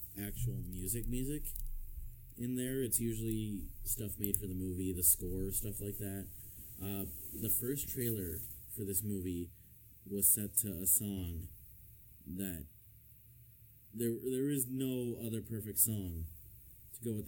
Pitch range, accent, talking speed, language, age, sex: 95-110 Hz, American, 140 wpm, English, 30-49, male